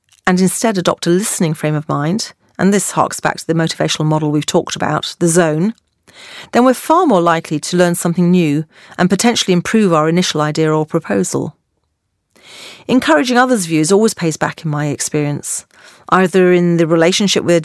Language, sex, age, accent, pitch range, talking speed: English, female, 40-59, British, 160-210 Hz, 175 wpm